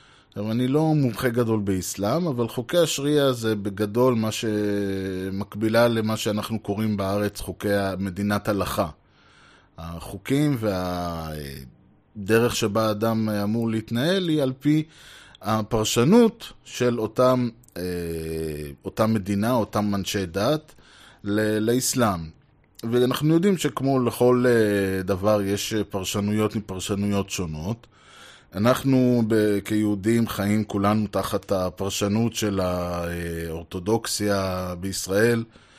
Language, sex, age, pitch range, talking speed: Hebrew, male, 20-39, 100-120 Hz, 95 wpm